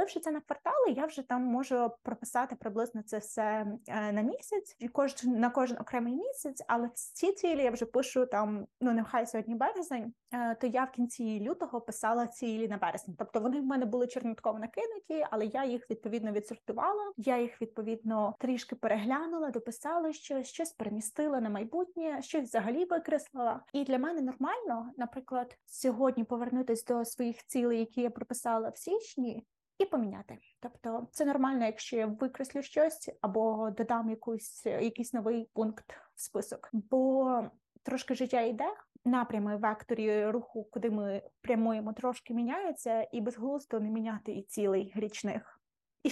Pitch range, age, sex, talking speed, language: 225-265 Hz, 20-39, female, 150 wpm, Ukrainian